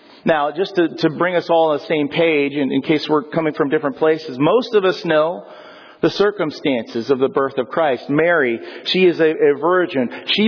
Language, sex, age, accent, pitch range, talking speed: English, male, 40-59, American, 150-185 Hz, 210 wpm